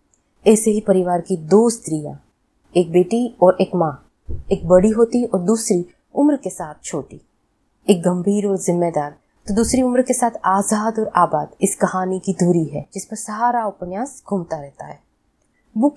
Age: 20-39